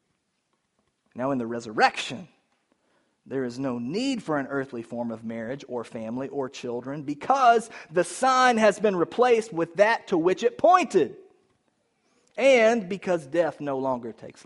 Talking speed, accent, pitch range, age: 150 wpm, American, 140-195 Hz, 40-59